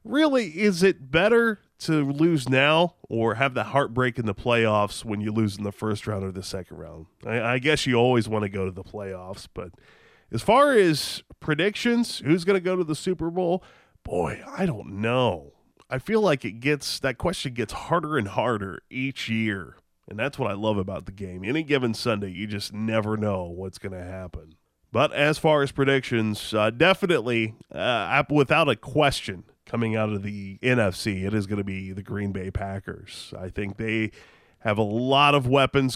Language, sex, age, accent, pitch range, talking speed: English, male, 20-39, American, 100-135 Hz, 195 wpm